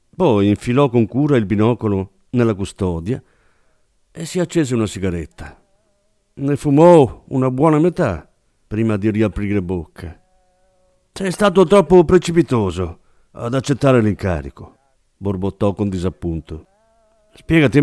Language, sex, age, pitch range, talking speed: Italian, male, 50-69, 100-165 Hz, 110 wpm